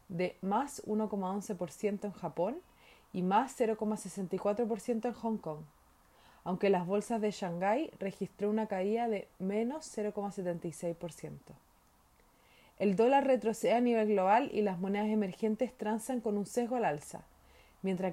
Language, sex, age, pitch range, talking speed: Spanish, female, 30-49, 195-230 Hz, 130 wpm